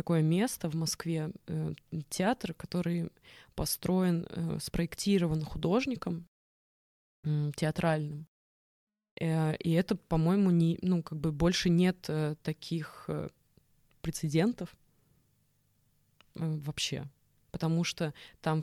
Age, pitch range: 20-39, 155-175 Hz